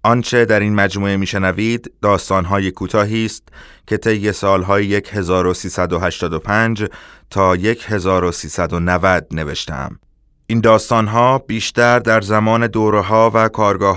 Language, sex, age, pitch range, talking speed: Persian, male, 30-49, 90-110 Hz, 100 wpm